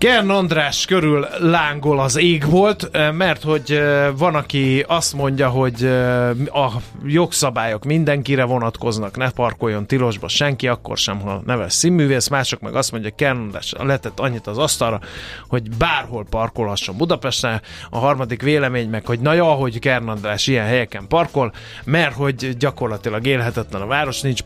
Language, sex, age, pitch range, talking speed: Hungarian, male, 30-49, 115-150 Hz, 150 wpm